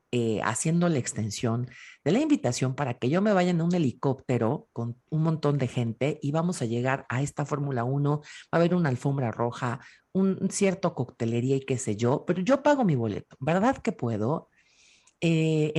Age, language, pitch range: 40-59, Spanish, 125-180 Hz